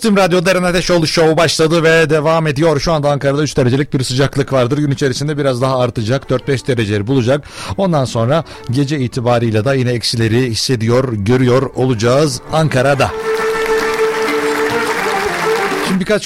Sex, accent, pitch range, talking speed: male, native, 115-155 Hz, 135 wpm